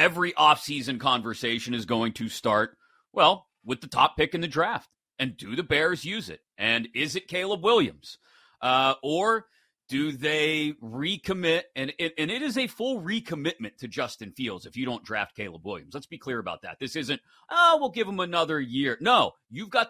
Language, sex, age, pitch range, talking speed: English, male, 30-49, 130-185 Hz, 195 wpm